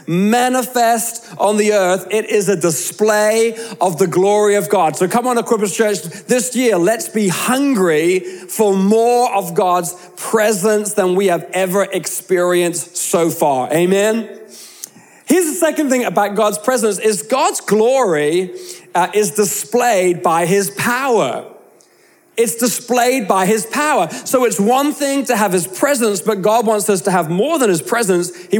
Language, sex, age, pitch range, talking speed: English, male, 40-59, 185-235 Hz, 160 wpm